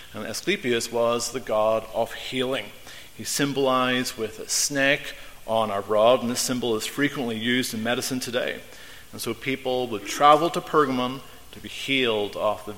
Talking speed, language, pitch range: 170 wpm, English, 115-140 Hz